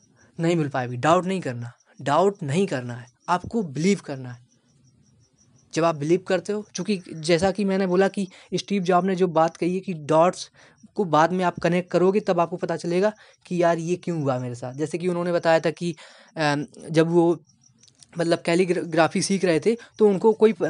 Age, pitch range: 20-39, 155-190 Hz